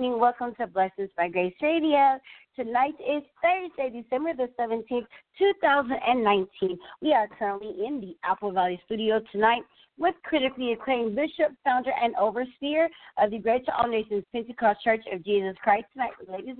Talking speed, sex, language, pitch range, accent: 150 wpm, female, English, 200-275 Hz, American